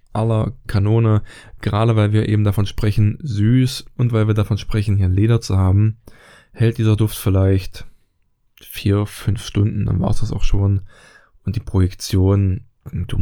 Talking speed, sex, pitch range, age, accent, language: 160 wpm, male, 100-115 Hz, 10-29, German, German